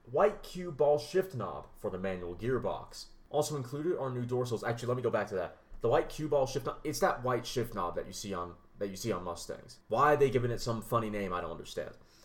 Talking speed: 255 wpm